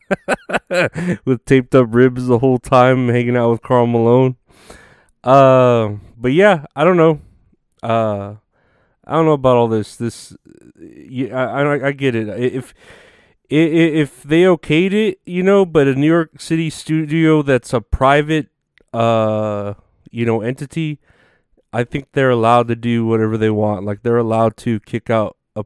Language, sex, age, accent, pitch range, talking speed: English, male, 30-49, American, 110-140 Hz, 160 wpm